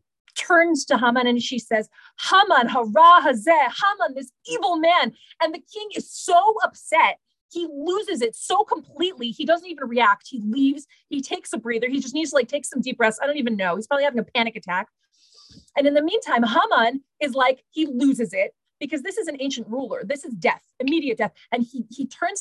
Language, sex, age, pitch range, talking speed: English, female, 30-49, 220-315 Hz, 210 wpm